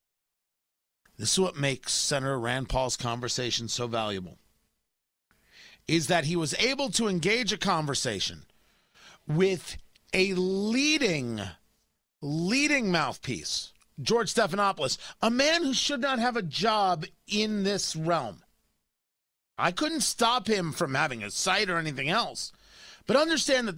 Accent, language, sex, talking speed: American, English, male, 130 wpm